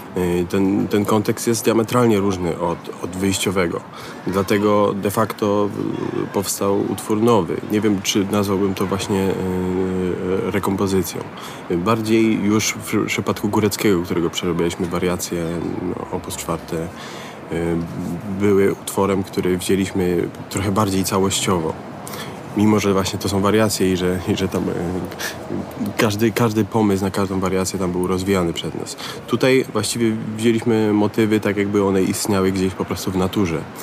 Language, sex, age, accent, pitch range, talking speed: Polish, male, 30-49, native, 95-105 Hz, 135 wpm